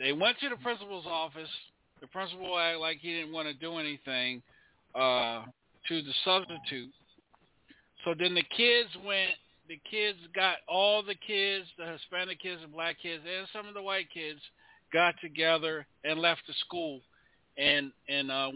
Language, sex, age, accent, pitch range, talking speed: English, male, 50-69, American, 140-180 Hz, 170 wpm